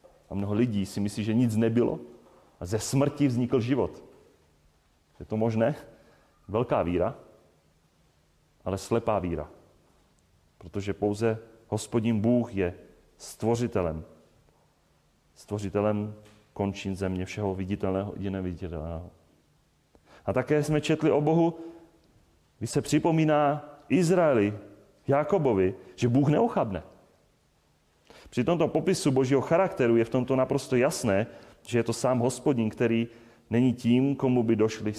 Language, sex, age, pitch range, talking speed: Czech, male, 40-59, 100-145 Hz, 120 wpm